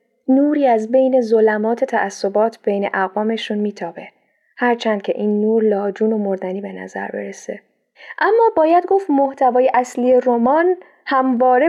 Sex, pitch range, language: female, 220-260 Hz, Persian